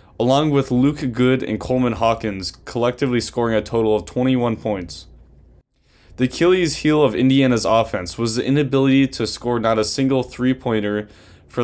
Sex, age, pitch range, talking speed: male, 10-29, 105-135 Hz, 160 wpm